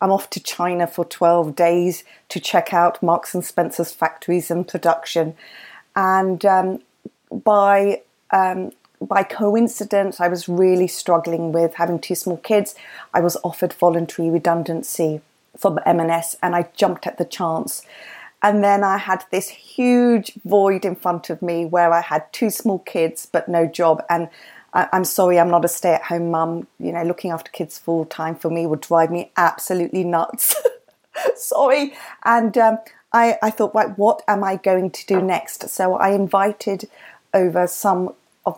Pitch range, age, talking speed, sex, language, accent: 170-205 Hz, 30-49, 165 wpm, female, English, British